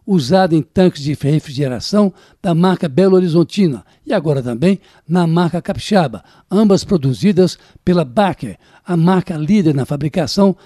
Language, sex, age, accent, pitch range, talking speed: Portuguese, male, 60-79, Brazilian, 165-200 Hz, 135 wpm